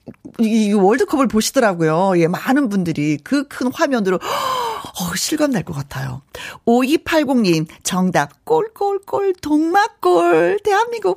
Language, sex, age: Korean, female, 40-59